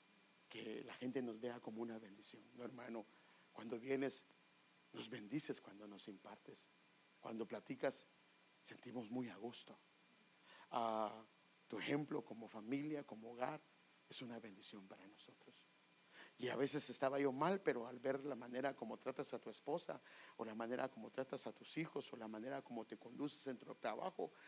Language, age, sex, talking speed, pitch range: English, 50-69, male, 165 wpm, 115-155 Hz